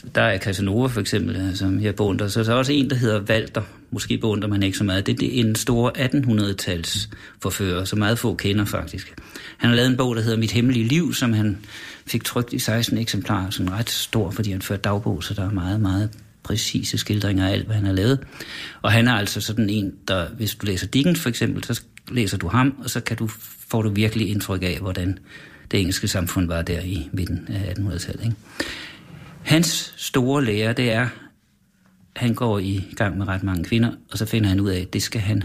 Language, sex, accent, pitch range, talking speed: Danish, male, native, 95-125 Hz, 220 wpm